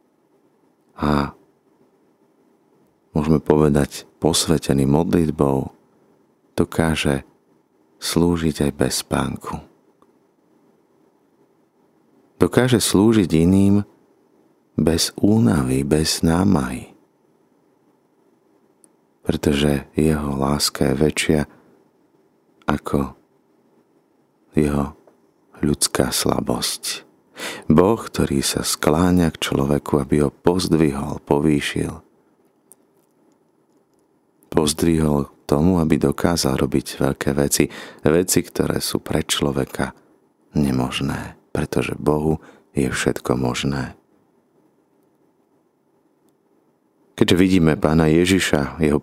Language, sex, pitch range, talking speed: Slovak, male, 70-85 Hz, 70 wpm